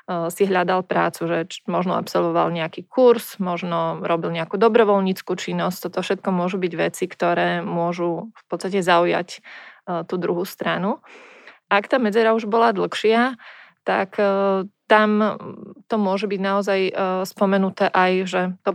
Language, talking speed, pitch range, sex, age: Slovak, 135 wpm, 180-200 Hz, female, 20-39